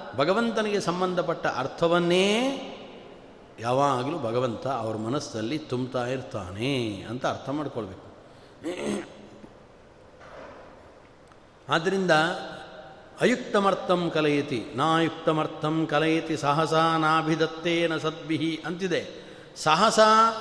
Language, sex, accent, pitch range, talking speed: Kannada, male, native, 135-180 Hz, 70 wpm